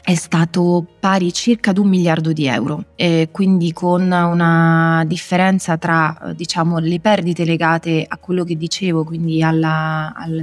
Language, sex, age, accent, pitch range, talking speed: Italian, female, 20-39, native, 165-180 Hz, 150 wpm